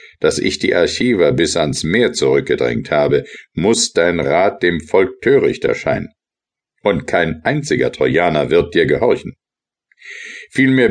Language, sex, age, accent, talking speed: German, male, 60-79, German, 130 wpm